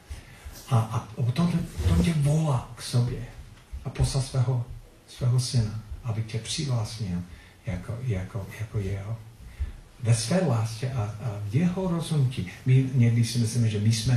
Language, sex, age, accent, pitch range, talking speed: Czech, male, 50-69, native, 105-130 Hz, 140 wpm